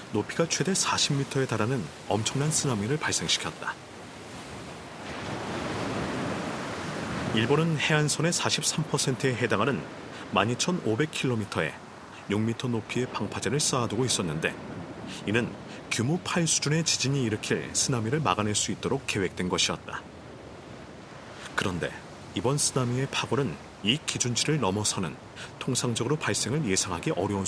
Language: Korean